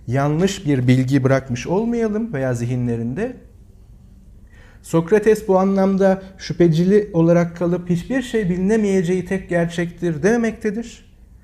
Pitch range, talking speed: 130-195 Hz, 100 wpm